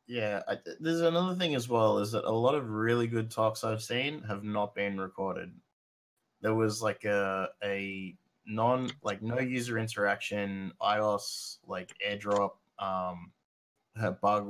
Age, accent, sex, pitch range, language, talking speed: 20-39, Australian, male, 100-110 Hz, English, 155 wpm